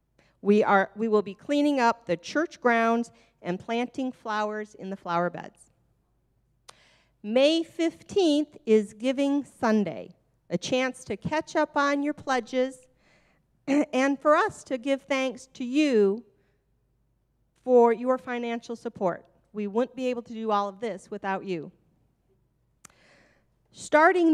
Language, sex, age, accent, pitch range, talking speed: English, female, 40-59, American, 195-275 Hz, 135 wpm